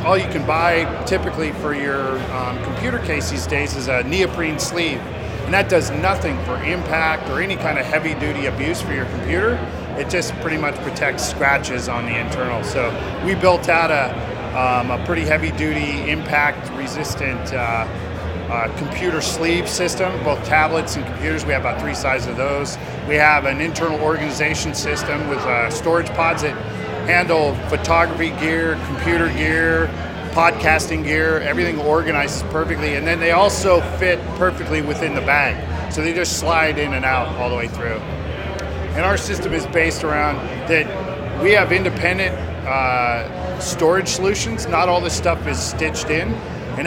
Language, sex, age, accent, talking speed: English, male, 40-59, American, 165 wpm